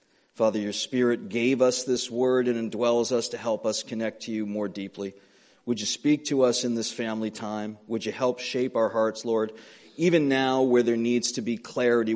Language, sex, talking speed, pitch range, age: English, male, 205 wpm, 110-125 Hz, 40-59